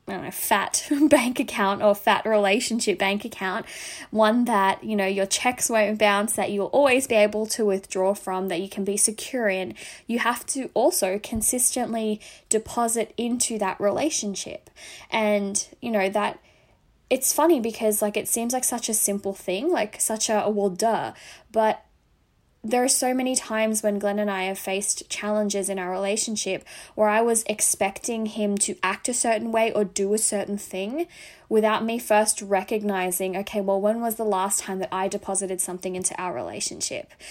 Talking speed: 180 wpm